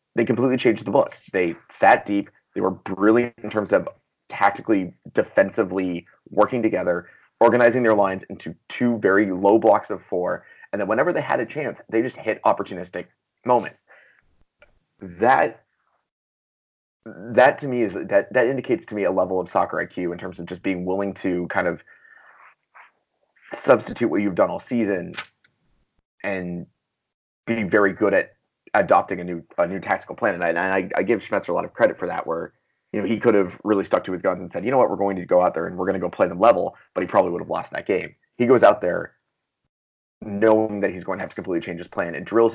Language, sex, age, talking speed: English, male, 30-49, 210 wpm